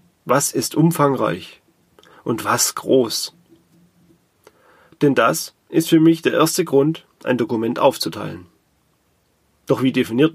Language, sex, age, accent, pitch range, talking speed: German, male, 30-49, German, 130-160 Hz, 115 wpm